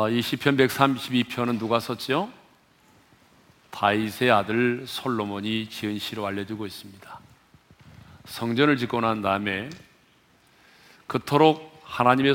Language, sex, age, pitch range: Korean, male, 40-59, 110-135 Hz